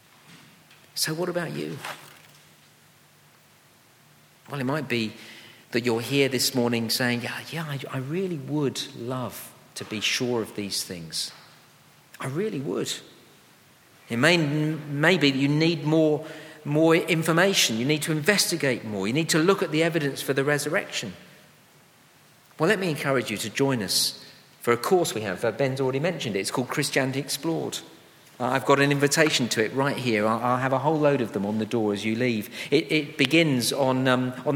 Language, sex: English, male